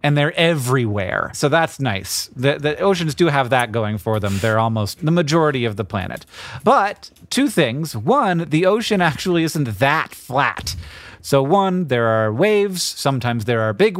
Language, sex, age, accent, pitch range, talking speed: English, male, 30-49, American, 120-170 Hz, 175 wpm